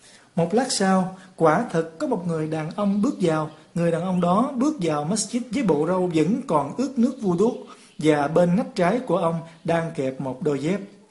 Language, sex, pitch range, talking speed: Vietnamese, male, 155-220 Hz, 205 wpm